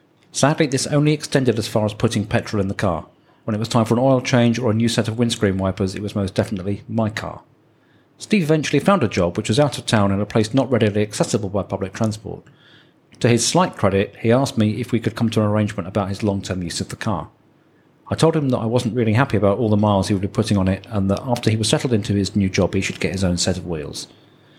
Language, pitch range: English, 100-125 Hz